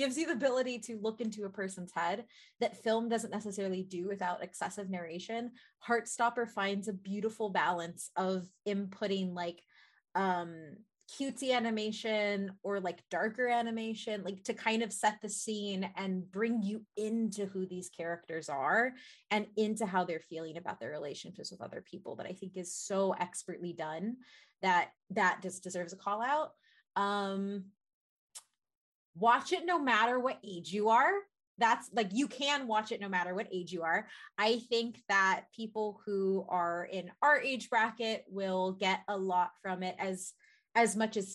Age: 20-39